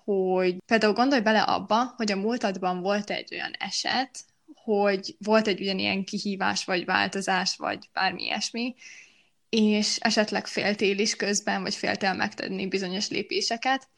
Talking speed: 135 wpm